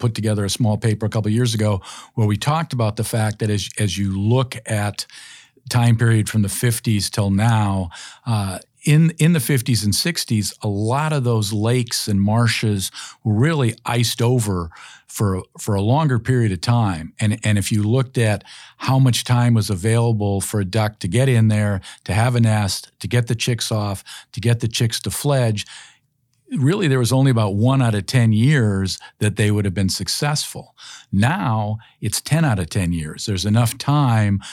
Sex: male